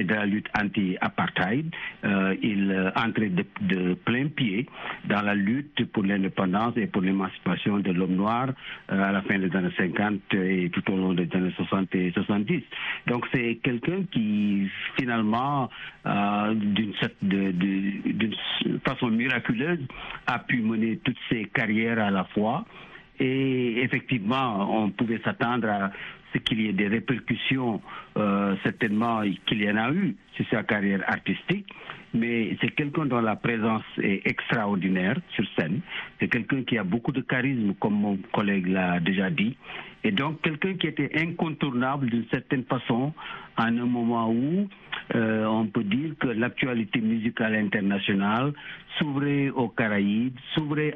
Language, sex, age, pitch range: French, male, 60-79, 100-130 Hz